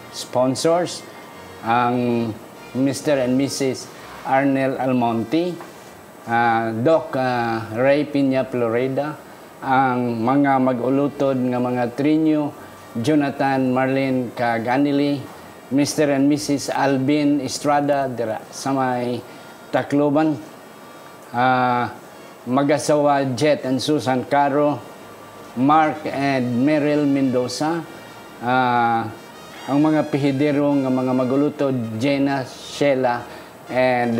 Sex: male